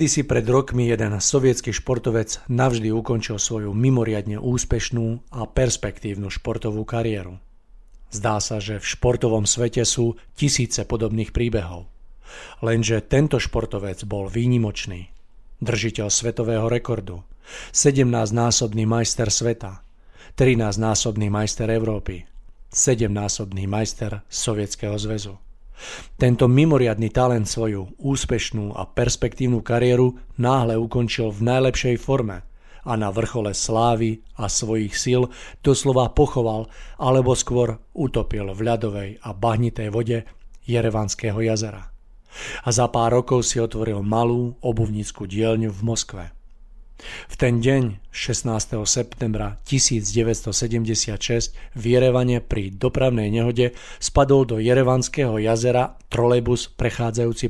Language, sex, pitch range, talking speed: Slovak, male, 105-120 Hz, 105 wpm